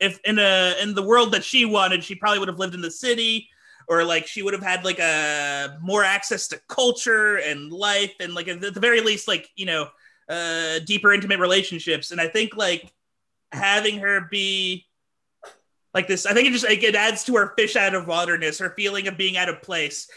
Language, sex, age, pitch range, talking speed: English, male, 30-49, 175-225 Hz, 215 wpm